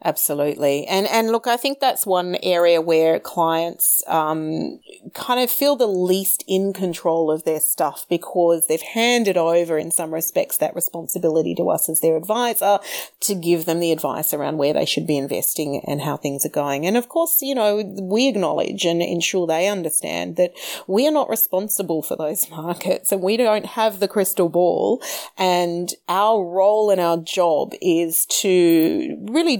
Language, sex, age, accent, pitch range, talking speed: English, female, 30-49, Australian, 155-190 Hz, 175 wpm